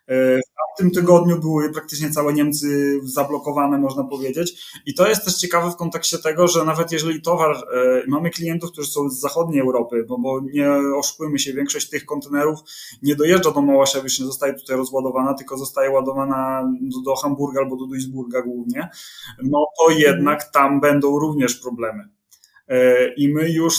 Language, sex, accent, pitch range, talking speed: Polish, male, native, 130-150 Hz, 160 wpm